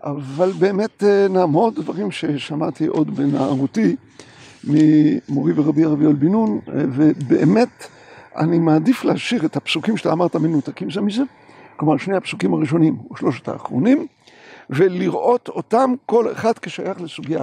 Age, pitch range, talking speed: 60-79, 180-250 Hz, 130 wpm